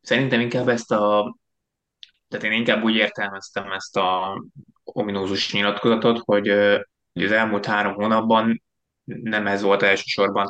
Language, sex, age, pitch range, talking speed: Hungarian, male, 20-39, 100-105 Hz, 125 wpm